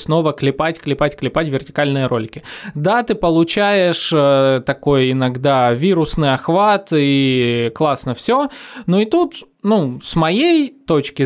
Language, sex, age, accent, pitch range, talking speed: Russian, male, 20-39, native, 135-185 Hz, 125 wpm